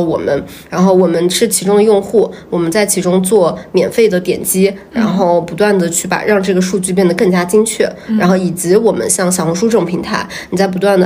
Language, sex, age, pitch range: Chinese, female, 20-39, 180-215 Hz